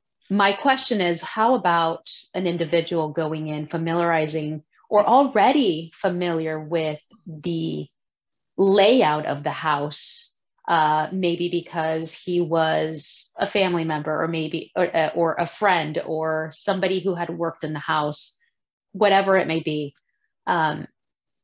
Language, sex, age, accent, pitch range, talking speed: English, female, 30-49, American, 155-190 Hz, 130 wpm